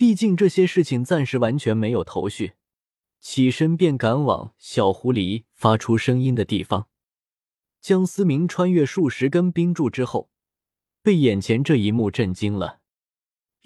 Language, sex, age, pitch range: Chinese, male, 20-39, 110-160 Hz